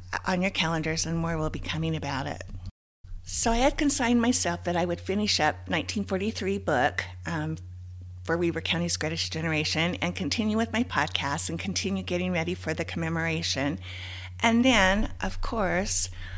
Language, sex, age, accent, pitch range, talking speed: English, female, 50-69, American, 100-170 Hz, 160 wpm